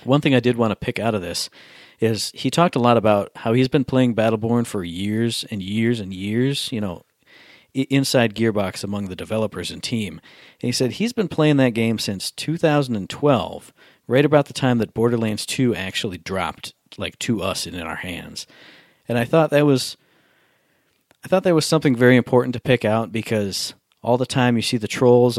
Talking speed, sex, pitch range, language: 200 wpm, male, 105-130 Hz, English